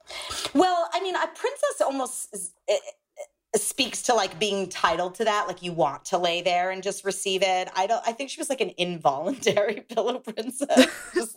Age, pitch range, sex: 30-49, 175-240 Hz, female